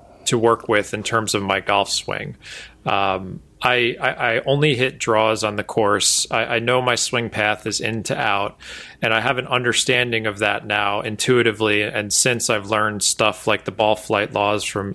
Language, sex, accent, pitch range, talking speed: English, male, American, 105-125 Hz, 195 wpm